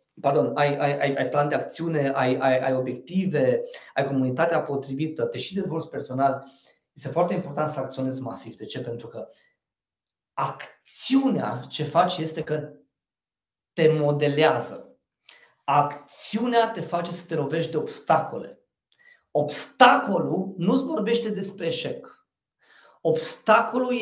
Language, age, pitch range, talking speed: Romanian, 30-49, 150-210 Hz, 125 wpm